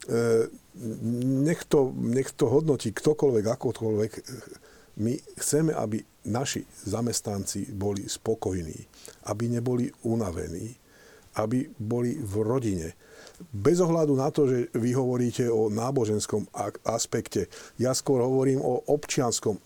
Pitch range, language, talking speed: 110-140 Hz, Slovak, 105 wpm